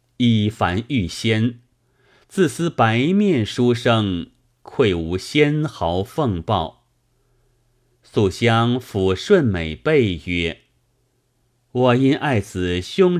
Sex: male